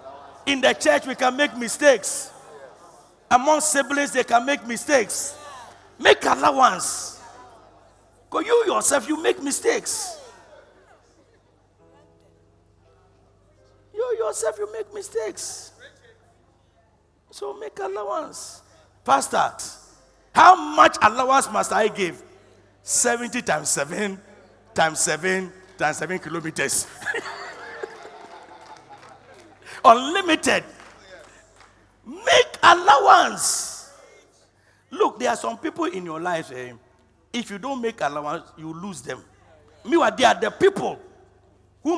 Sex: male